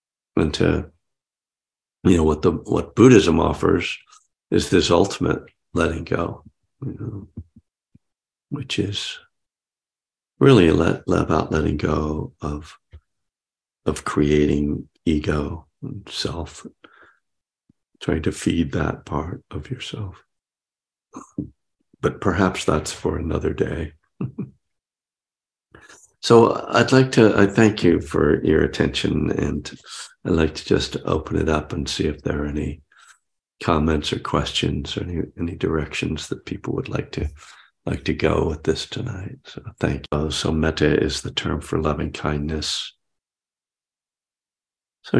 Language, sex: English, male